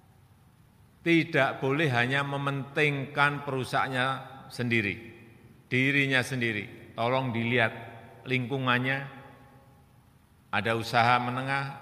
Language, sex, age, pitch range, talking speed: Indonesian, male, 40-59, 110-135 Hz, 70 wpm